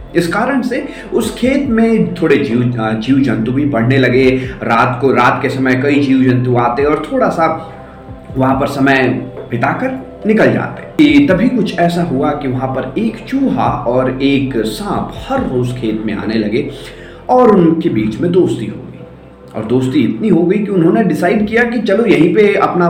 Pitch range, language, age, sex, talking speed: 120-200 Hz, Hindi, 30-49, male, 185 wpm